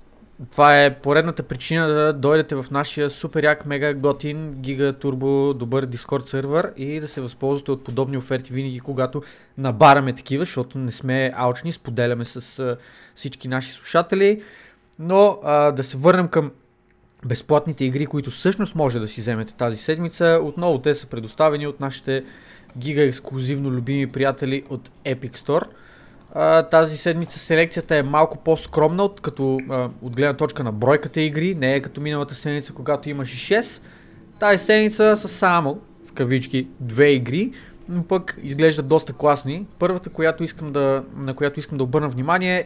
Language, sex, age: Bulgarian, male, 20-39